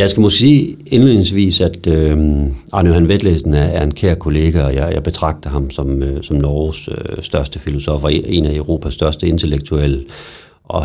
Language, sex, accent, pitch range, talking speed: Danish, male, native, 75-90 Hz, 160 wpm